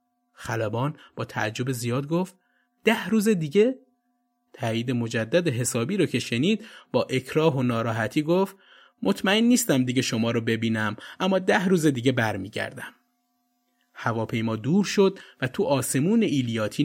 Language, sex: Persian, male